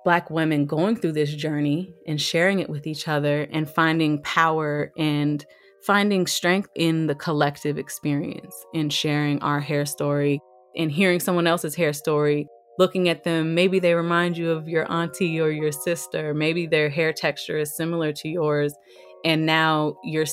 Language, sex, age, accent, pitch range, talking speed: English, female, 20-39, American, 145-165 Hz, 170 wpm